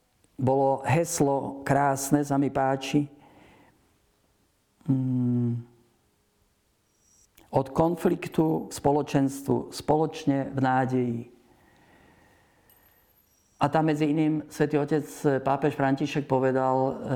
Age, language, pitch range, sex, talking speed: 50-69, Slovak, 130-150 Hz, male, 75 wpm